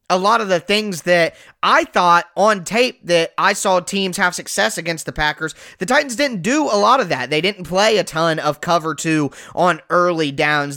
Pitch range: 160-200 Hz